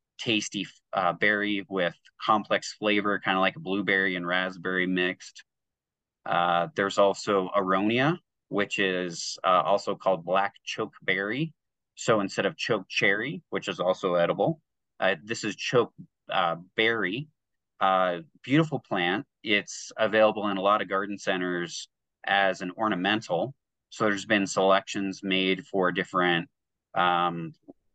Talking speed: 135 wpm